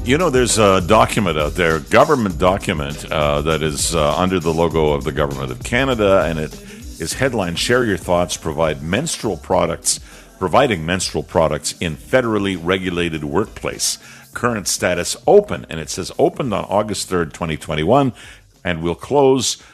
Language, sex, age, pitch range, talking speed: English, male, 50-69, 85-120 Hz, 160 wpm